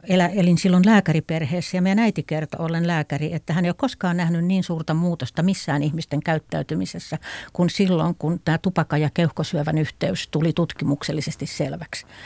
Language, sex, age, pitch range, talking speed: Finnish, female, 60-79, 150-180 Hz, 155 wpm